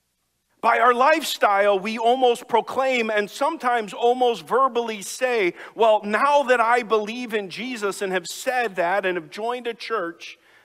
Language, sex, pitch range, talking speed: English, male, 155-230 Hz, 150 wpm